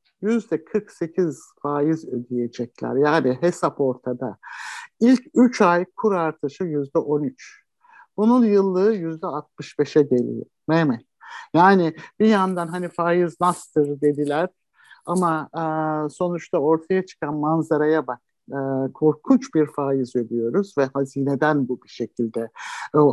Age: 60-79